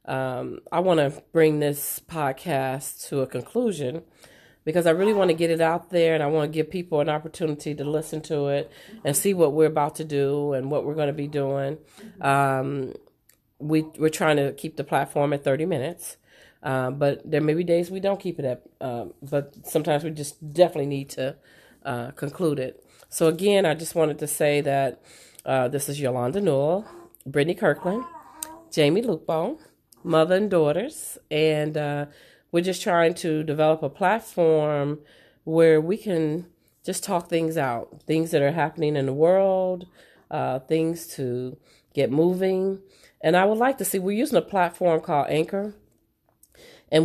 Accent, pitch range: American, 145-180 Hz